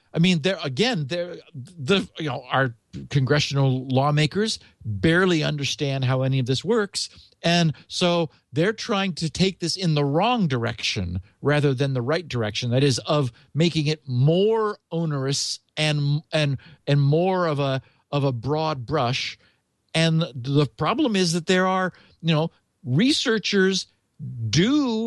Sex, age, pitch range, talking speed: male, 50-69, 140-185 Hz, 150 wpm